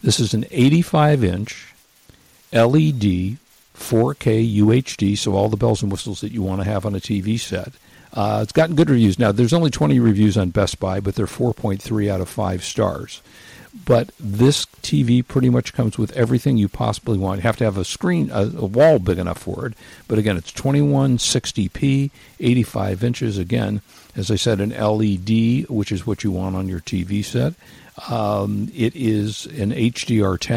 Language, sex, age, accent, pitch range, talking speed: English, male, 50-69, American, 100-120 Hz, 180 wpm